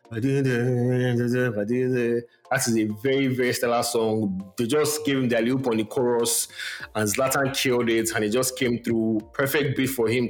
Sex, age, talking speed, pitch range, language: male, 30-49, 170 wpm, 115-140 Hz, English